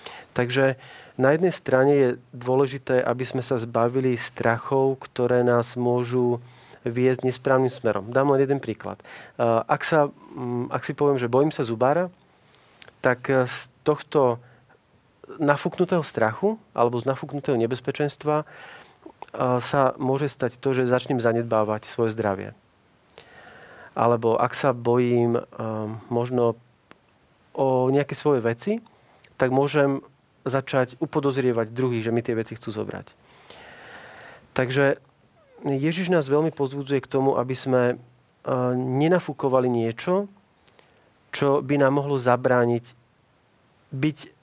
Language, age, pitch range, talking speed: Slovak, 40-59, 120-140 Hz, 115 wpm